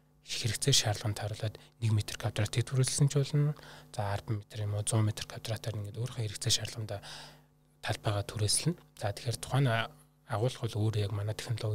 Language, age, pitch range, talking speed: Russian, 20-39, 110-130 Hz, 150 wpm